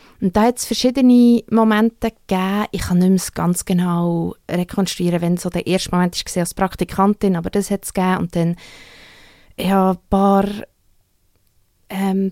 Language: German